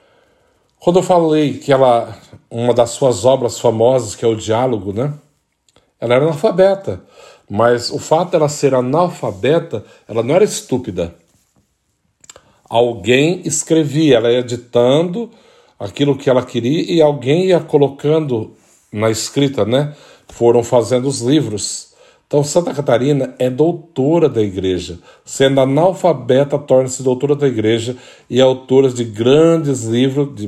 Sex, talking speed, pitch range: male, 130 wpm, 110-145 Hz